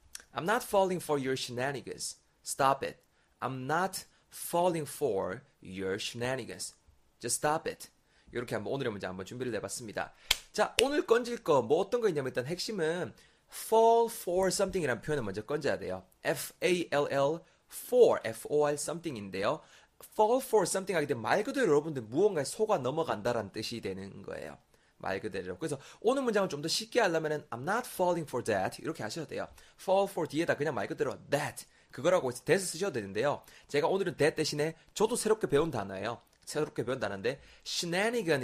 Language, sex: Korean, male